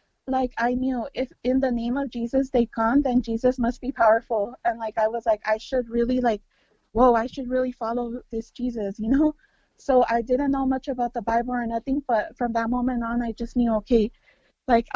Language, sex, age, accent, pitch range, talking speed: English, female, 30-49, American, 230-260 Hz, 215 wpm